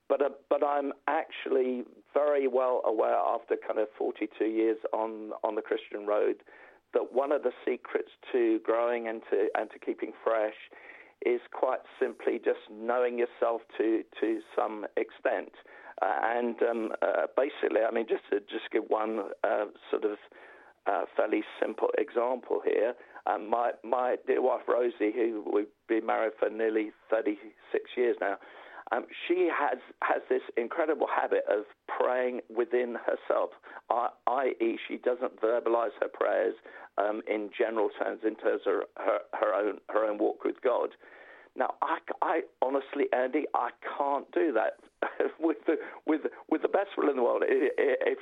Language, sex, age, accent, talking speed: English, male, 50-69, British, 160 wpm